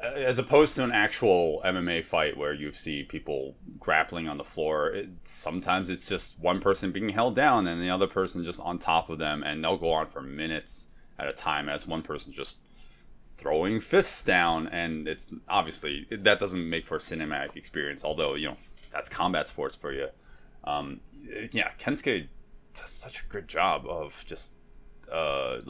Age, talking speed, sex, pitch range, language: 30-49, 180 wpm, male, 80-105 Hz, English